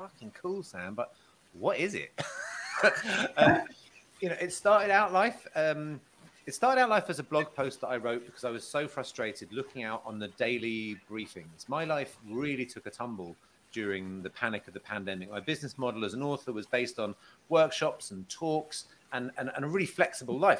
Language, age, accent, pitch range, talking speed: English, 30-49, British, 110-150 Hz, 200 wpm